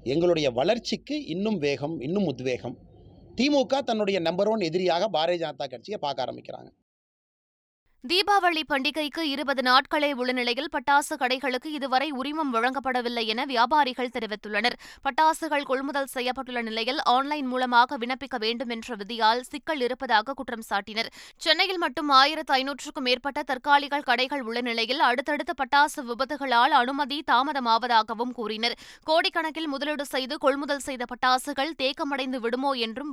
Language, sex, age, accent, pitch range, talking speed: Tamil, female, 20-39, native, 235-285 Hz, 120 wpm